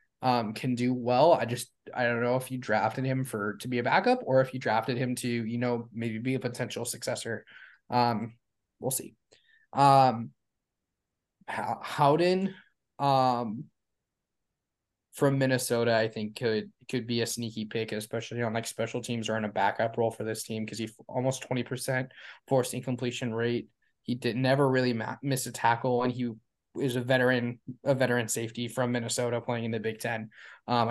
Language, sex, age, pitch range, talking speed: English, male, 10-29, 115-130 Hz, 185 wpm